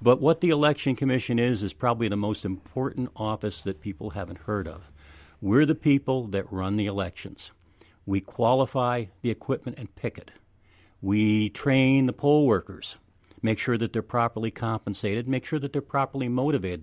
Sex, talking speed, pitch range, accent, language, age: male, 170 wpm, 100-130 Hz, American, English, 50-69